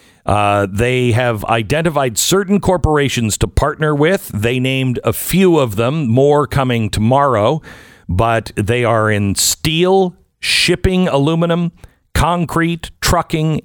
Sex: male